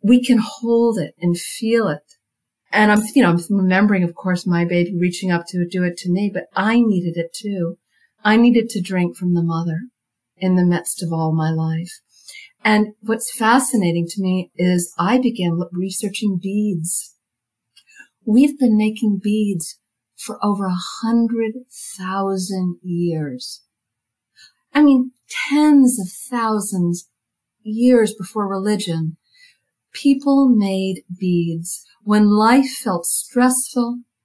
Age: 50-69